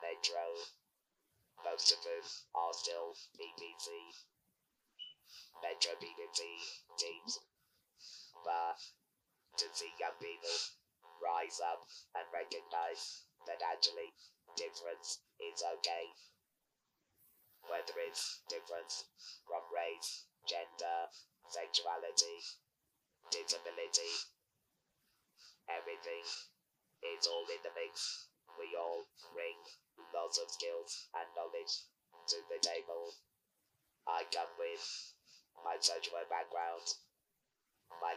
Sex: male